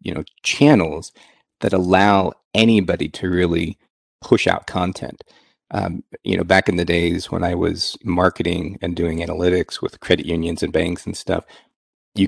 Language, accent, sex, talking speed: English, American, male, 160 wpm